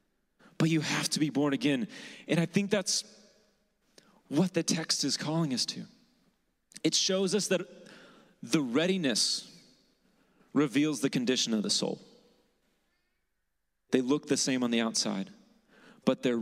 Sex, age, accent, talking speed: male, 30-49, American, 145 wpm